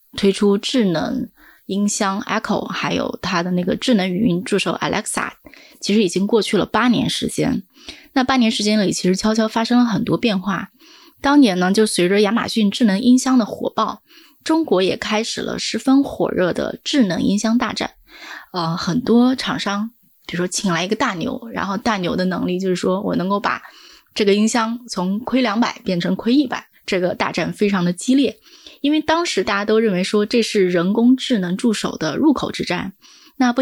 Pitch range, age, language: 195-255 Hz, 20-39, Chinese